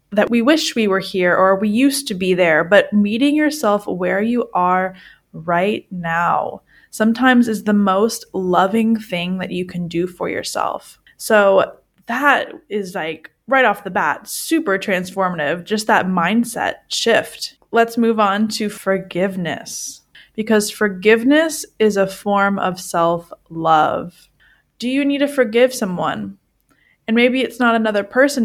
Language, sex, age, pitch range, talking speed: English, female, 20-39, 185-230 Hz, 150 wpm